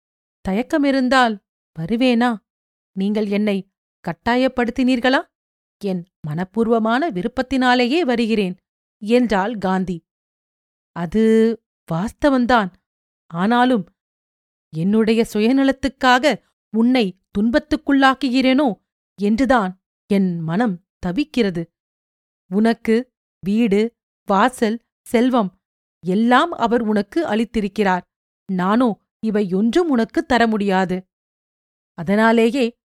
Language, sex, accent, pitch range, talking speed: Tamil, female, native, 200-255 Hz, 70 wpm